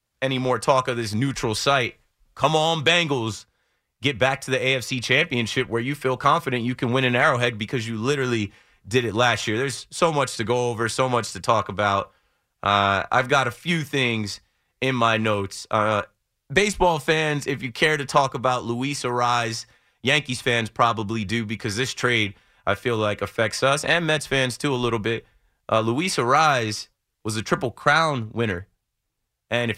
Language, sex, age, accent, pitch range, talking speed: English, male, 30-49, American, 115-145 Hz, 185 wpm